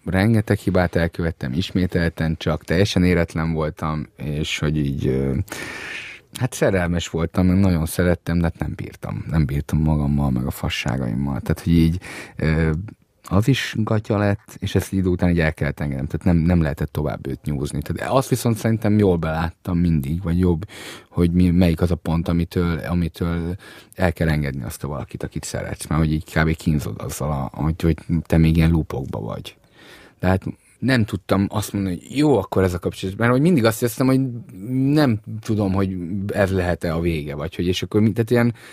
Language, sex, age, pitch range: Hungarian, male, 30-49, 80-100 Hz